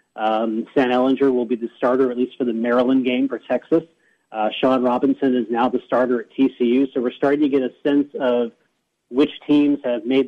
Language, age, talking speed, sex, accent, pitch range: English, 40-59, 210 wpm, male, American, 125-145 Hz